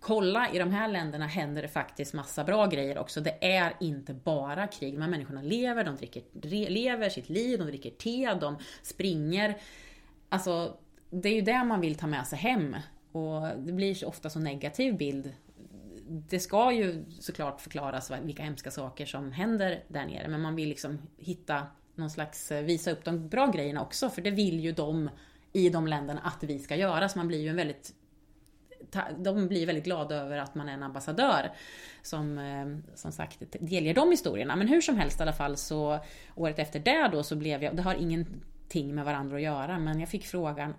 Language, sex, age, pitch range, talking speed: Swedish, female, 30-49, 145-185 Hz, 195 wpm